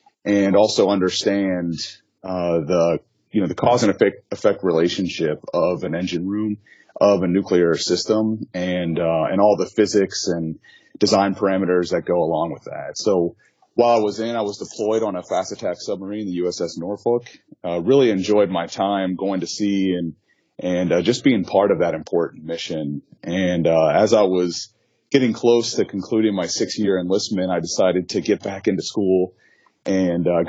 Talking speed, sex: 180 wpm, male